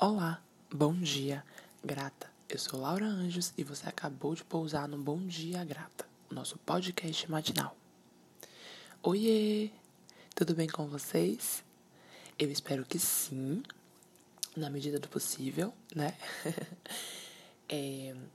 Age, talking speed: 20-39, 115 wpm